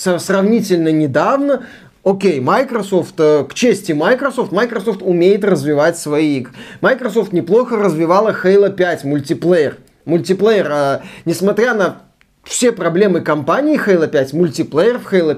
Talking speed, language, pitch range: 115 wpm, Russian, 175-230 Hz